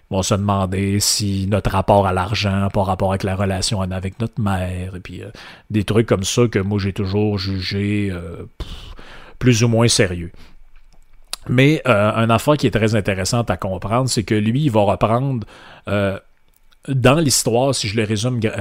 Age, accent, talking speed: 30-49, Canadian, 185 wpm